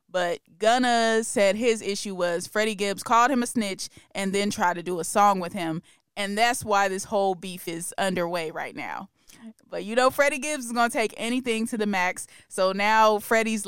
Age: 20-39